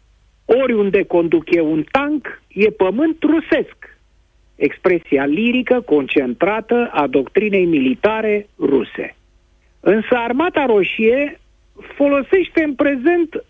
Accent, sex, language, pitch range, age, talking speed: native, male, Romanian, 175-275 Hz, 50-69, 95 wpm